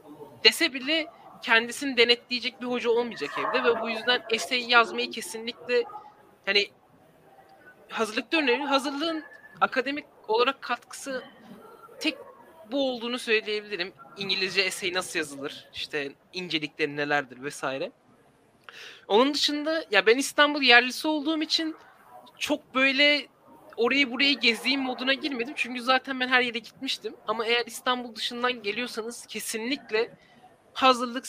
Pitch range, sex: 215-275 Hz, male